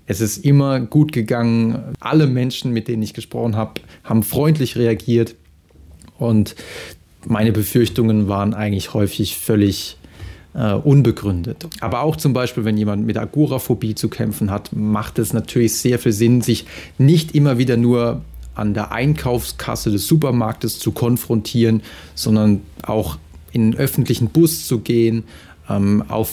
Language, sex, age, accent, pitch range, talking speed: German, male, 30-49, German, 105-125 Hz, 140 wpm